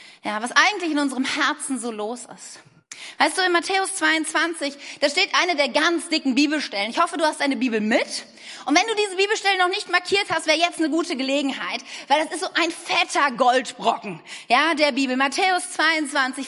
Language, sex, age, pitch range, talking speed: German, female, 30-49, 265-360 Hz, 195 wpm